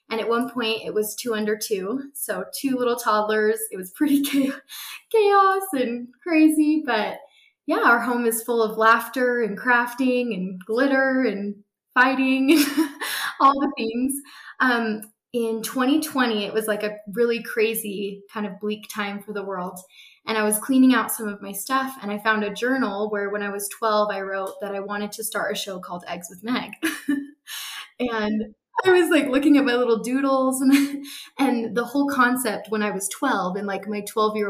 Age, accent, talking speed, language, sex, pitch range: 10-29, American, 185 wpm, English, female, 210-265 Hz